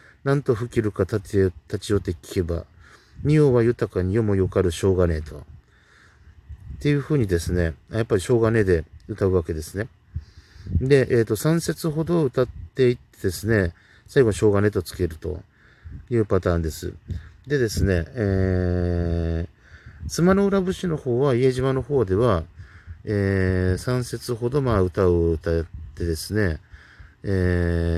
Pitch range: 85-110 Hz